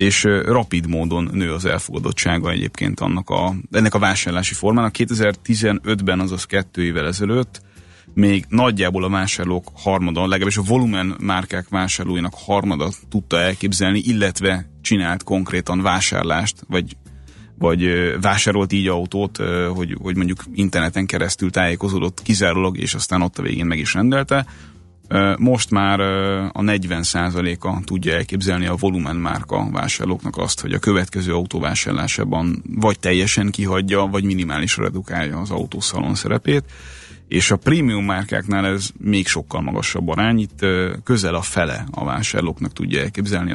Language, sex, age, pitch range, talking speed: Hungarian, male, 30-49, 90-100 Hz, 130 wpm